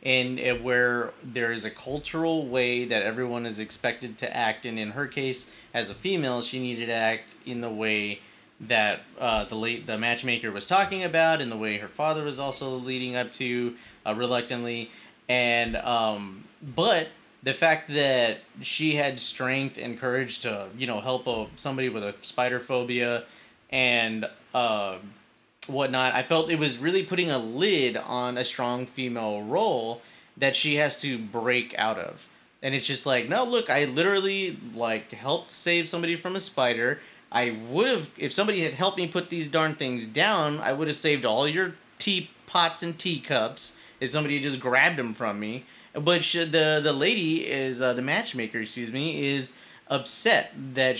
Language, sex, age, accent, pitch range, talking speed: English, male, 30-49, American, 120-155 Hz, 180 wpm